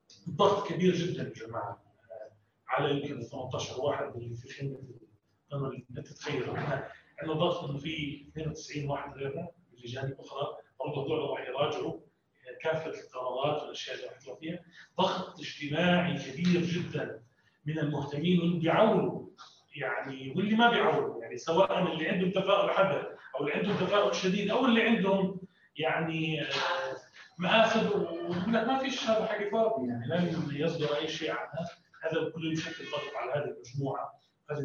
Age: 30-49